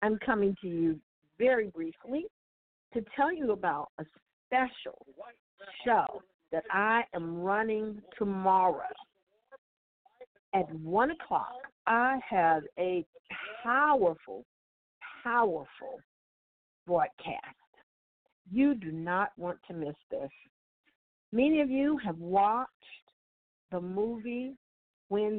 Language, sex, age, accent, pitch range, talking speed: English, female, 50-69, American, 175-245 Hz, 100 wpm